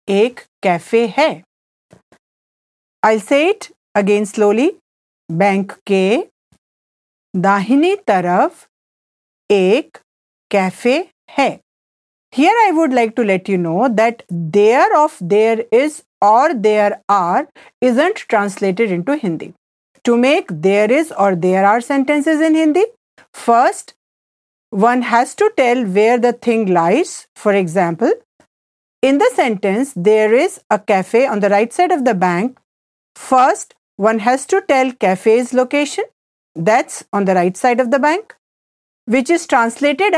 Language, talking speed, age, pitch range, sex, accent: English, 130 wpm, 50-69, 205-290 Hz, female, Indian